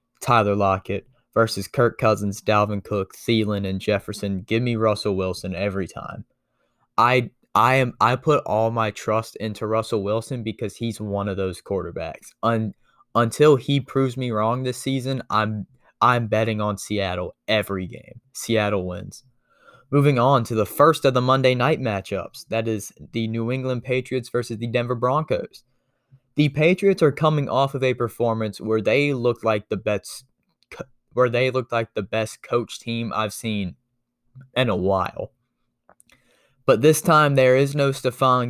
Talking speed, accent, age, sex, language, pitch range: 160 wpm, American, 10-29, male, English, 105-130 Hz